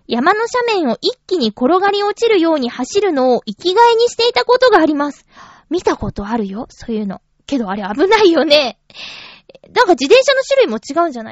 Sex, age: female, 20-39